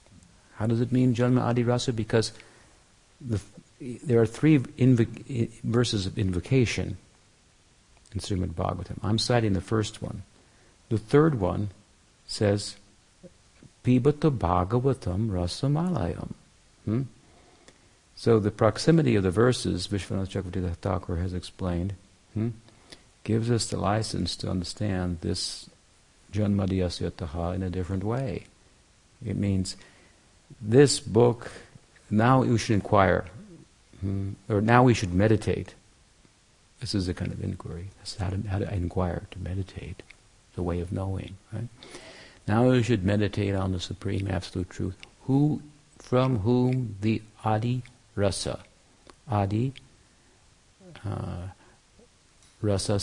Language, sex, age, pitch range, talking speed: English, male, 60-79, 95-115 Hz, 120 wpm